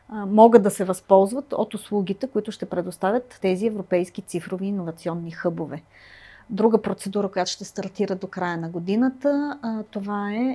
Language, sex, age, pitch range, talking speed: Bulgarian, female, 30-49, 190-240 Hz, 140 wpm